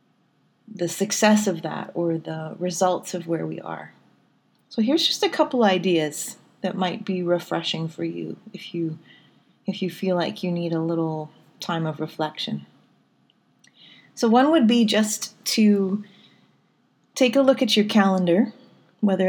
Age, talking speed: 30-49, 150 wpm